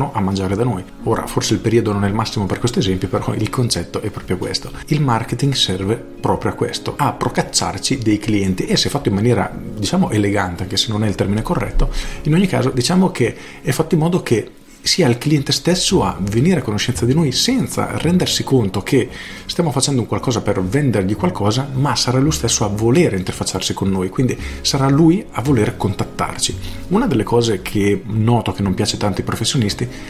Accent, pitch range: native, 100-130 Hz